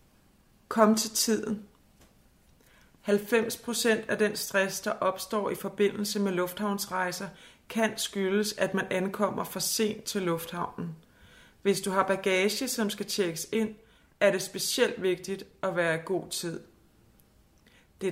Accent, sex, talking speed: native, female, 135 wpm